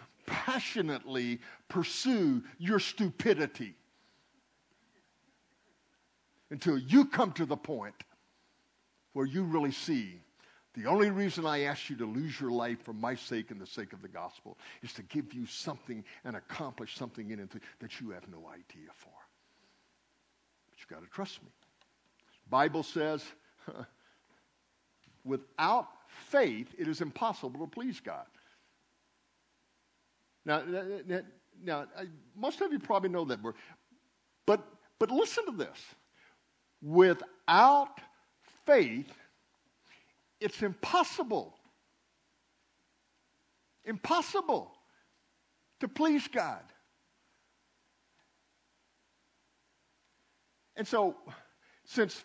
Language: English